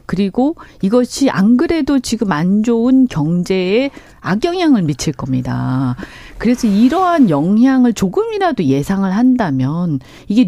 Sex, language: female, Korean